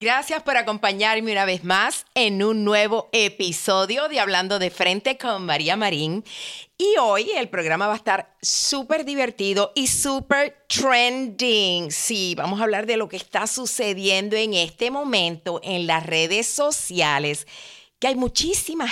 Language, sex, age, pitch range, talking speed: Spanish, female, 50-69, 190-270 Hz, 150 wpm